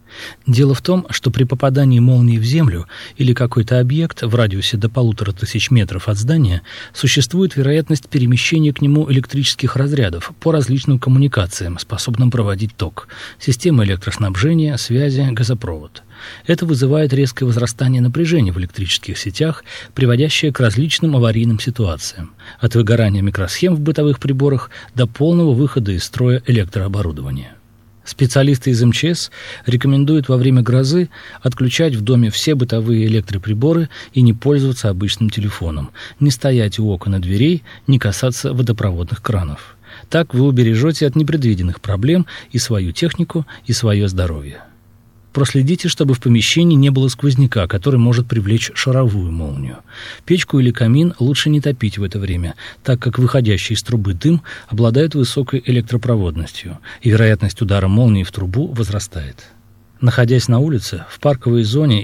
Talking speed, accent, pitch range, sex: 140 wpm, native, 105-140 Hz, male